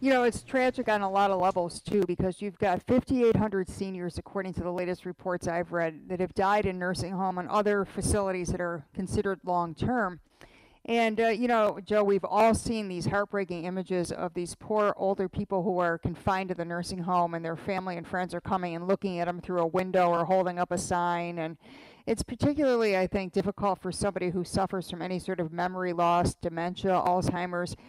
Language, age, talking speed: English, 50-69, 205 wpm